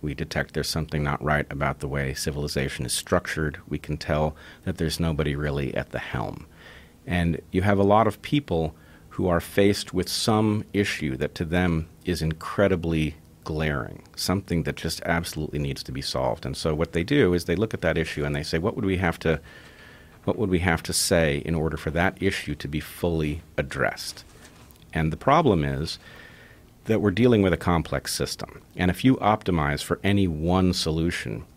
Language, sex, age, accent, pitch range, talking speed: English, male, 40-59, American, 75-90 Hz, 195 wpm